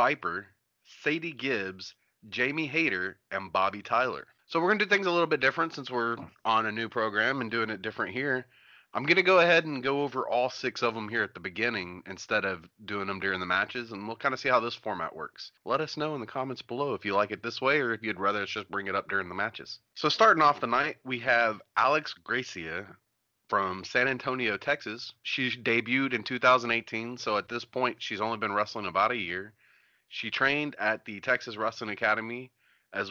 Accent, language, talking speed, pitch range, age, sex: American, English, 220 wpm, 105-130 Hz, 30-49, male